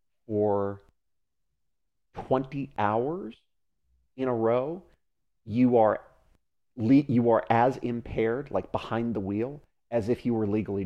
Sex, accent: male, American